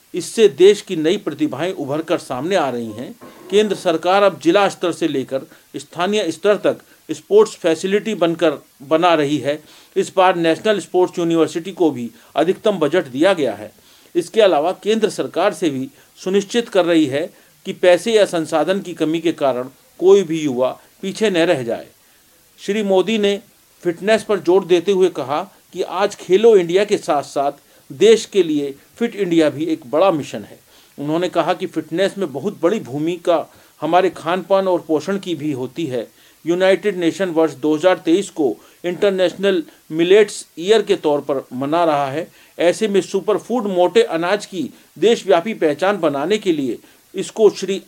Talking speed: 170 wpm